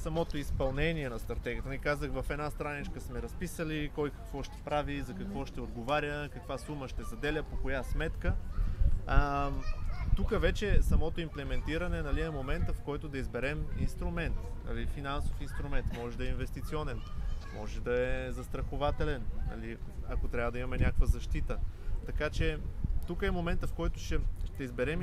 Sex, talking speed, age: male, 160 wpm, 20-39